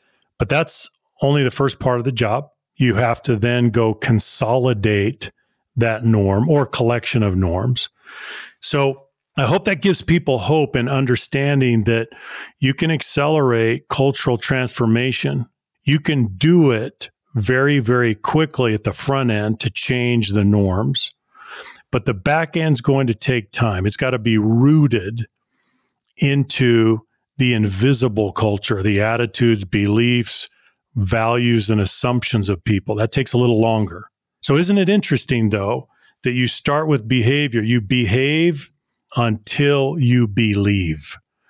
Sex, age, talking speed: male, 40-59, 140 wpm